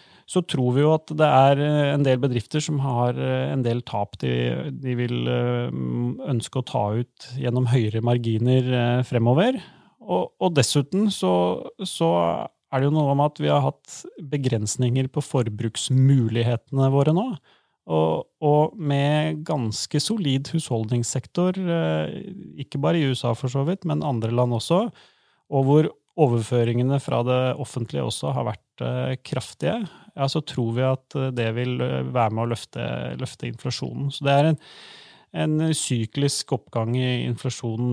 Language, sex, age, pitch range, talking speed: English, male, 30-49, 115-145 Hz, 150 wpm